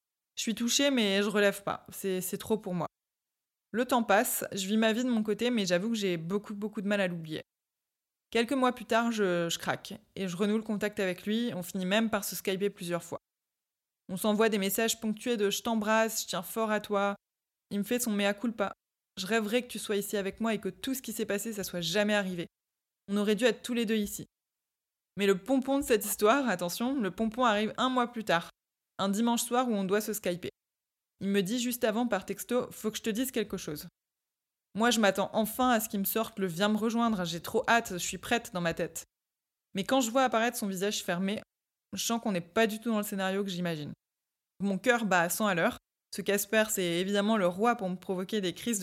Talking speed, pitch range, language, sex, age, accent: 240 wpm, 195-230 Hz, French, female, 20-39, French